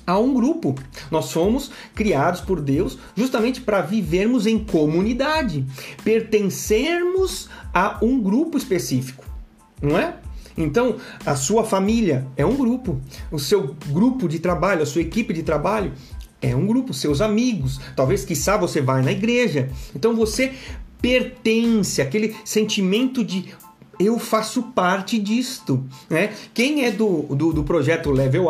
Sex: male